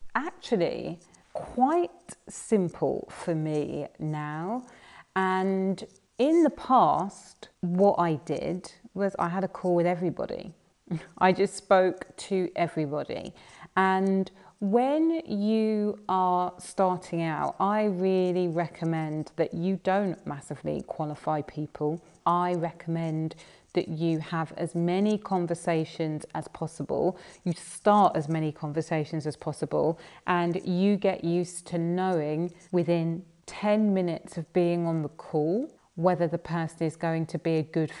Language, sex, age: English, female, 30-49